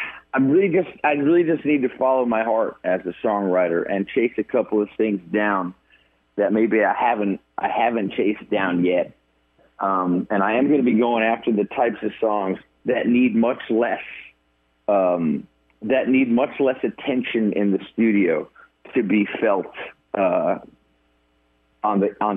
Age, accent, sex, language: 40-59, American, male, English